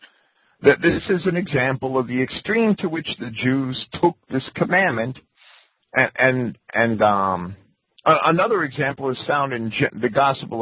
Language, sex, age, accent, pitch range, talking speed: English, male, 50-69, American, 120-155 Hz, 155 wpm